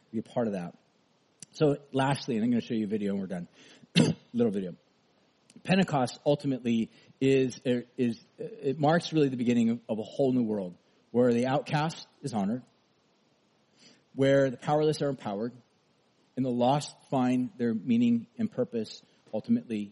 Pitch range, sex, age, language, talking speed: 125-160 Hz, male, 40-59, English, 165 wpm